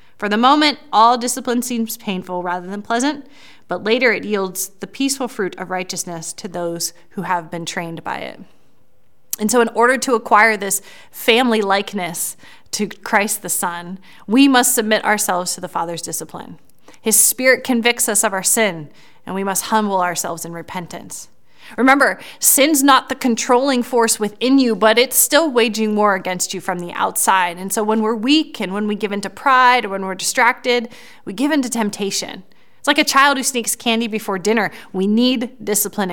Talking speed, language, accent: 190 wpm, English, American